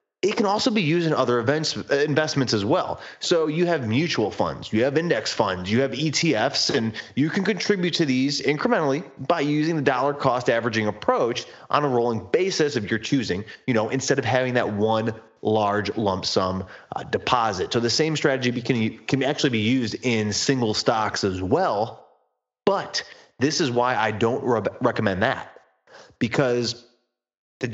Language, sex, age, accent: English, male, 30-49, American